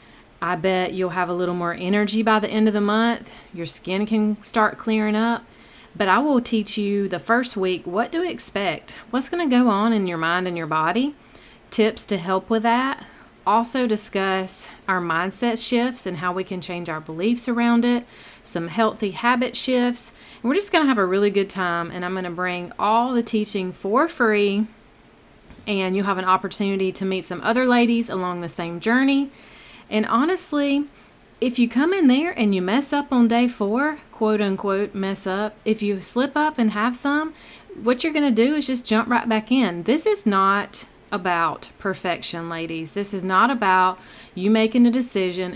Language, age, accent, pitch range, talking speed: English, 30-49, American, 185-240 Hz, 195 wpm